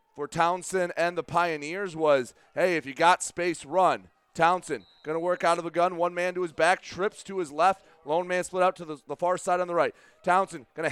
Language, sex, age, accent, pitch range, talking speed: English, male, 30-49, American, 180-245 Hz, 230 wpm